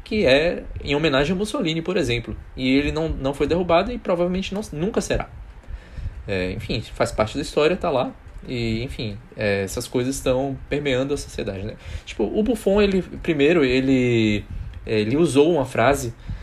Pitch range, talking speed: 105-145 Hz, 170 wpm